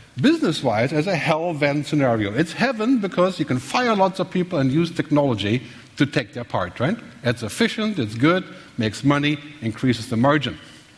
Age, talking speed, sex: 60-79, 180 wpm, male